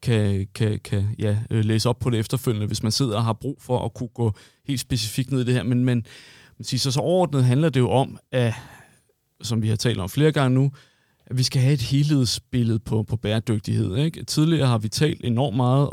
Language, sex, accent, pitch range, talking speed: Danish, male, native, 115-140 Hz, 230 wpm